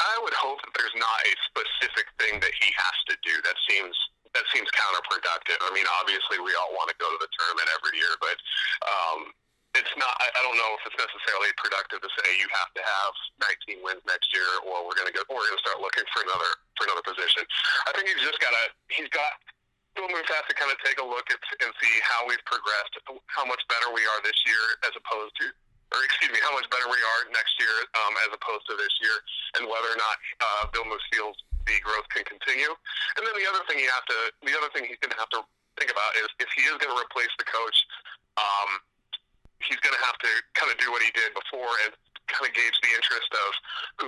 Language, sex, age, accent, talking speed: English, male, 40-59, American, 240 wpm